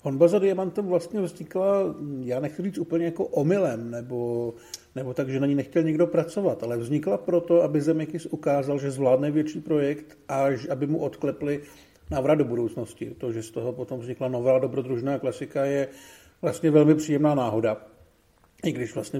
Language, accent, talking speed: Czech, native, 170 wpm